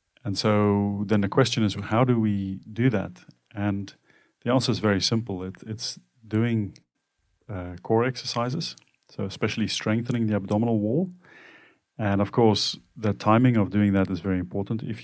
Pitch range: 95-110 Hz